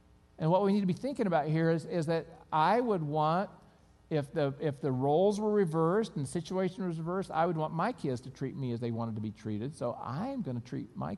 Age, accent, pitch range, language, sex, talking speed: 50-69, American, 120-160 Hz, English, male, 250 wpm